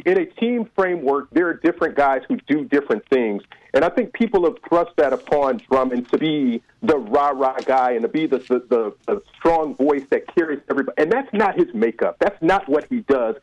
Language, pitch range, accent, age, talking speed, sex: English, 140-230 Hz, American, 40-59, 215 wpm, male